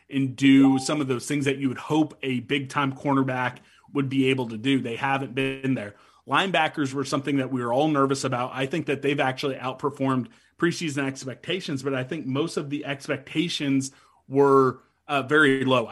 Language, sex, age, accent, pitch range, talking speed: English, male, 30-49, American, 130-145 Hz, 190 wpm